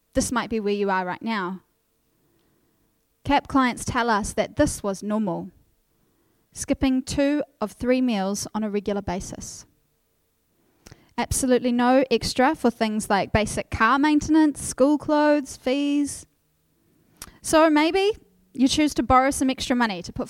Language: English